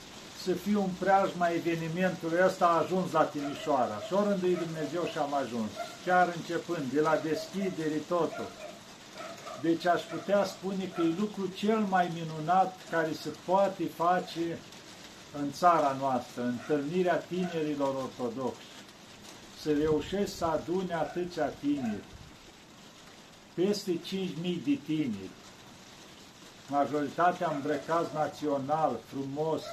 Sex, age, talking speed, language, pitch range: male, 50-69, 115 wpm, Romanian, 150-180 Hz